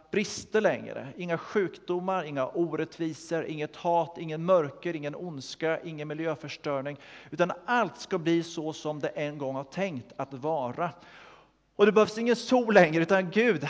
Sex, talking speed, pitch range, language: male, 155 wpm, 150-190 Hz, Swedish